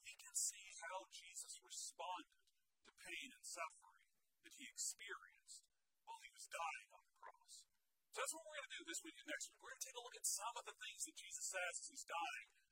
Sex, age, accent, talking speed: male, 40-59, American, 220 wpm